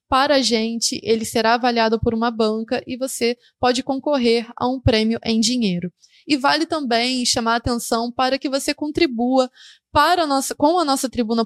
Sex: female